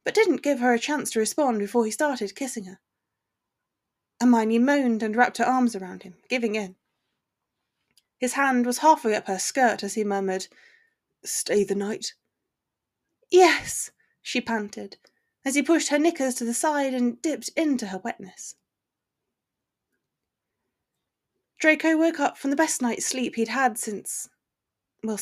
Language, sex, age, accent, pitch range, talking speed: English, female, 20-39, British, 215-290 Hz, 150 wpm